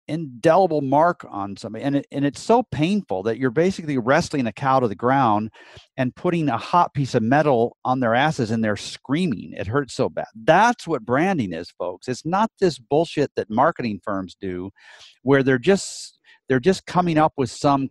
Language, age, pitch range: English, 50-69, 105-145 Hz